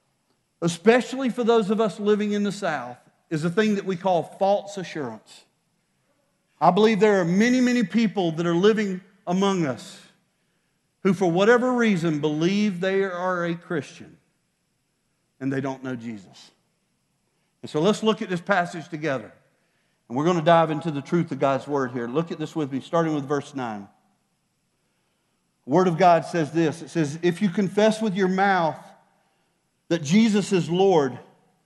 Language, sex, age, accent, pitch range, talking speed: English, male, 50-69, American, 165-210 Hz, 170 wpm